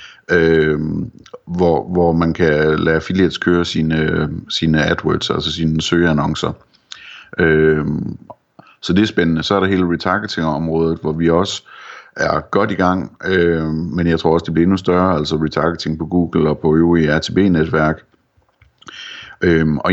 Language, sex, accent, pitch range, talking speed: Danish, male, native, 80-90 Hz, 140 wpm